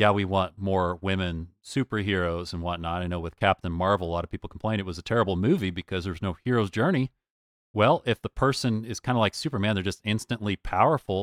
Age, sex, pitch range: 40-59, male, 90-105 Hz